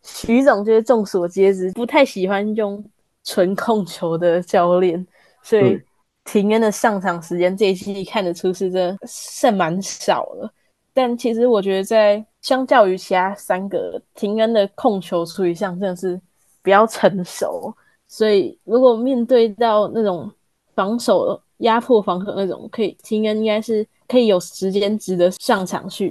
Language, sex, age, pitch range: Chinese, female, 10-29, 185-225 Hz